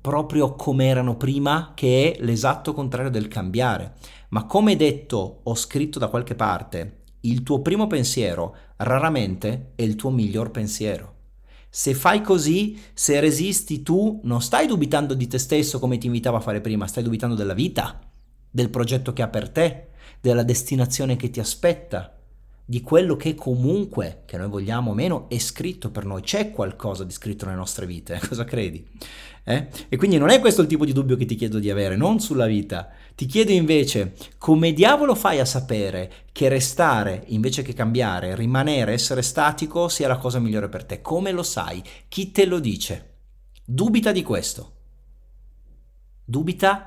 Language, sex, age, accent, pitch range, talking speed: Italian, male, 40-59, native, 110-150 Hz, 175 wpm